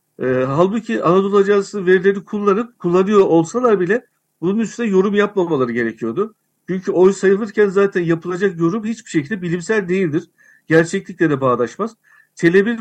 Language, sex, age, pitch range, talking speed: Turkish, male, 60-79, 155-200 Hz, 125 wpm